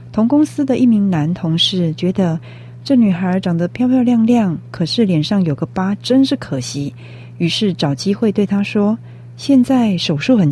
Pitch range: 140-225 Hz